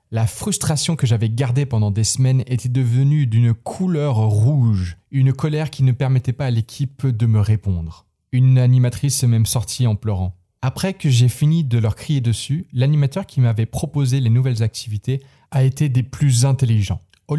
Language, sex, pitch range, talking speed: French, male, 120-145 Hz, 180 wpm